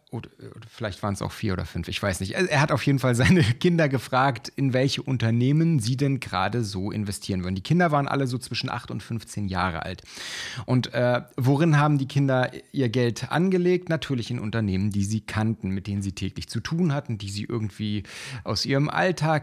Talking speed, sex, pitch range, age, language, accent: 205 wpm, male, 110-145 Hz, 40-59, German, German